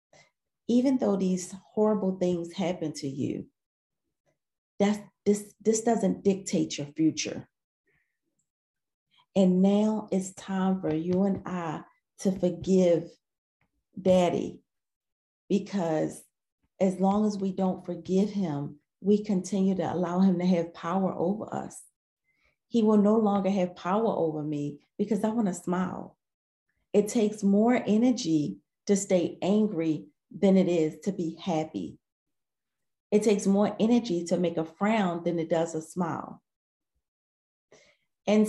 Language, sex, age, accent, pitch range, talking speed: English, female, 40-59, American, 165-200 Hz, 130 wpm